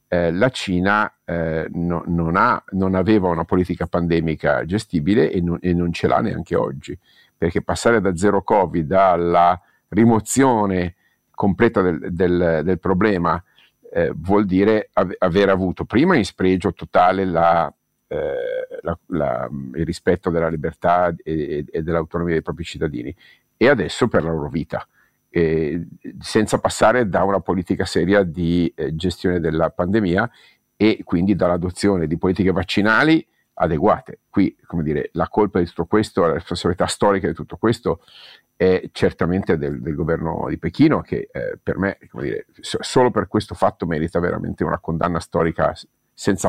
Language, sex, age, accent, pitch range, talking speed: Italian, male, 50-69, native, 85-100 Hz, 145 wpm